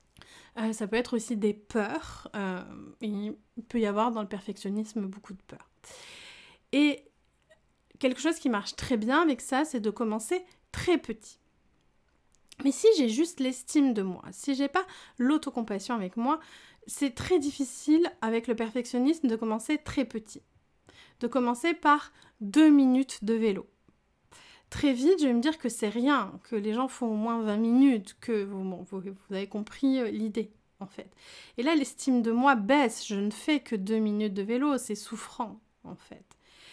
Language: French